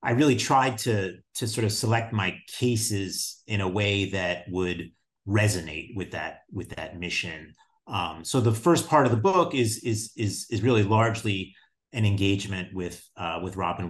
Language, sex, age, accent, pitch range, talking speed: English, male, 30-49, American, 90-115 Hz, 175 wpm